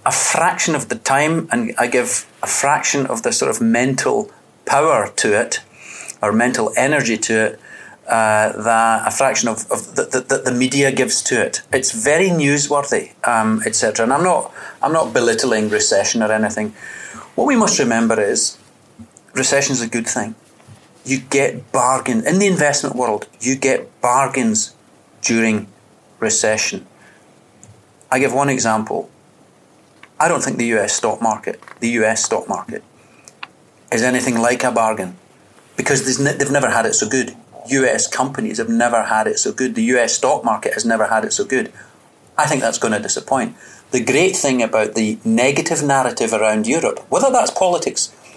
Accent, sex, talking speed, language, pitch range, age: British, male, 165 wpm, English, 110-135 Hz, 30-49